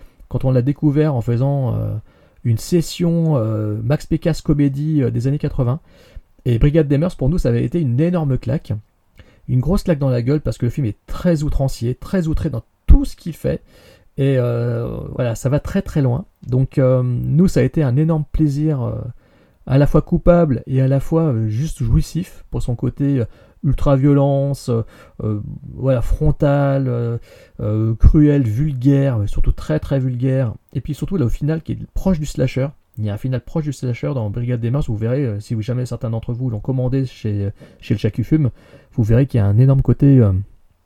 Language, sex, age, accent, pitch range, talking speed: French, male, 30-49, French, 120-145 Hz, 210 wpm